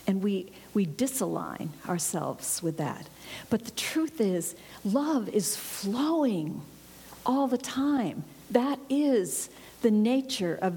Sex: female